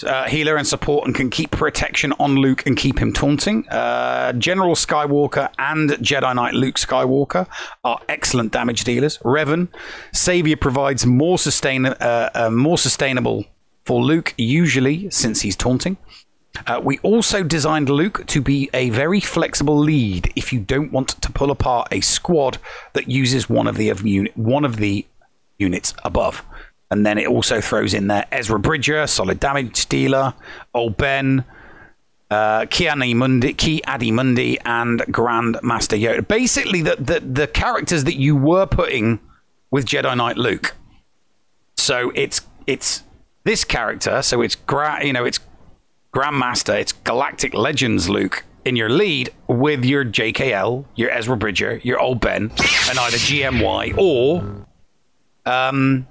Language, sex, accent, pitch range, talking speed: English, male, British, 115-145 Hz, 155 wpm